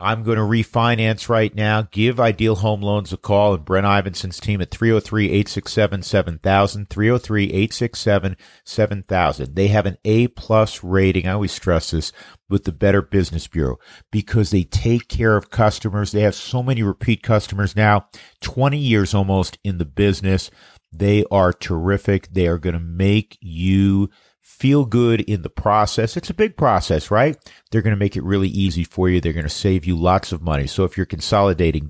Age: 50-69